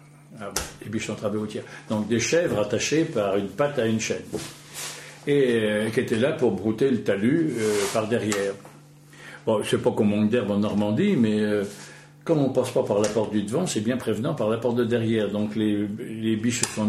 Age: 60-79